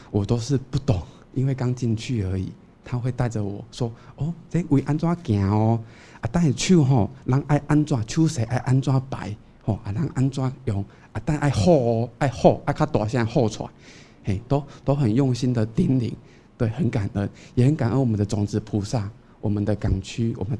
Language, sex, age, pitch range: Chinese, male, 20-39, 105-135 Hz